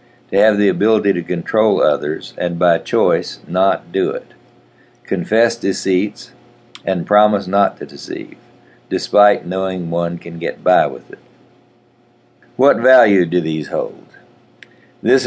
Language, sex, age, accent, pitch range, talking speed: English, male, 60-79, American, 80-95 Hz, 135 wpm